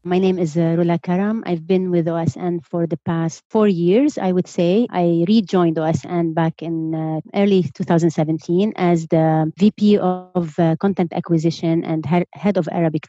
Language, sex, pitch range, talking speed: English, female, 165-195 Hz, 165 wpm